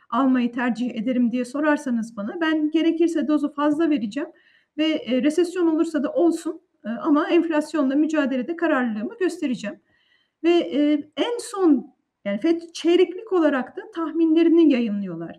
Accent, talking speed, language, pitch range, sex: native, 135 wpm, Turkish, 235-320 Hz, female